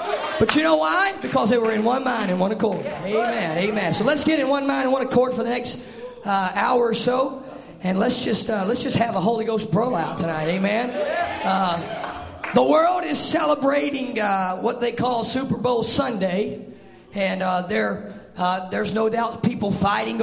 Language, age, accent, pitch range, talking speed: English, 40-59, American, 210-290 Hz, 195 wpm